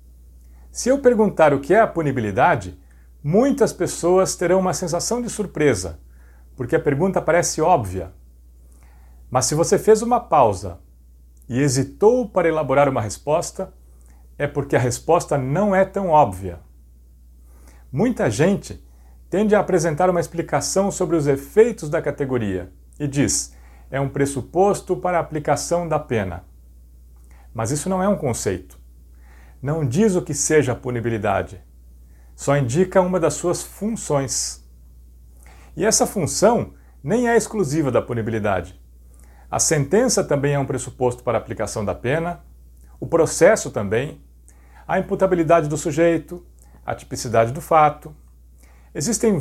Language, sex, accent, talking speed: Portuguese, male, Brazilian, 135 wpm